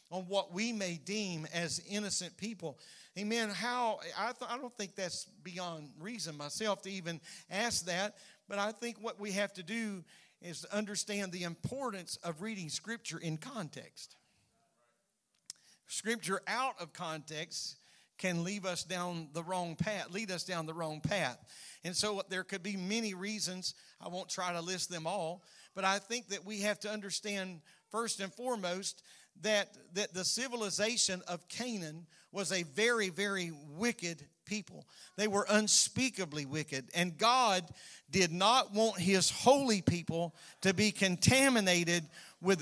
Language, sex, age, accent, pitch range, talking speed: English, male, 50-69, American, 175-215 Hz, 155 wpm